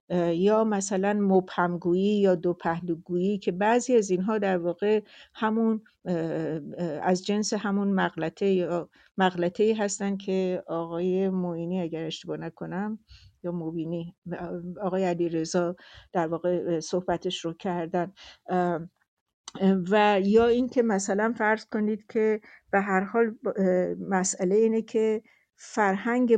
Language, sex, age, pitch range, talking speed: English, female, 60-79, 175-215 Hz, 110 wpm